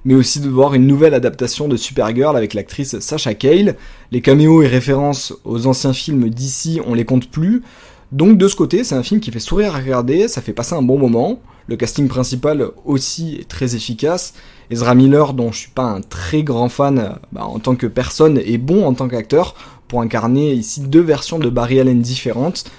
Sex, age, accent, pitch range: male, 20-39, French, 120-150 Hz